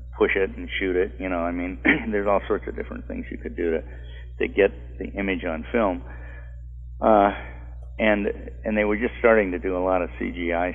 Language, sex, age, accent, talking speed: English, male, 50-69, American, 210 wpm